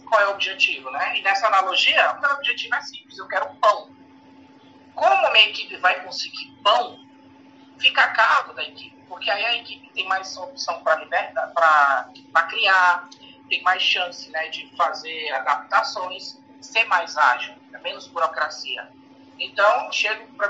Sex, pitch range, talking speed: male, 215-285 Hz, 160 wpm